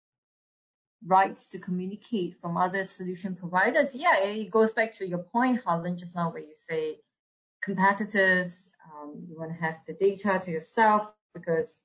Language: English